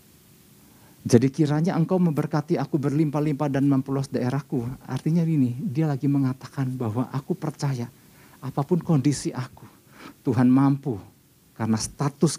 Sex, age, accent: male, 50-69, native